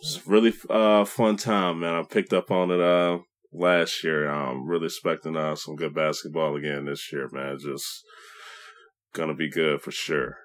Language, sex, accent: English, male, American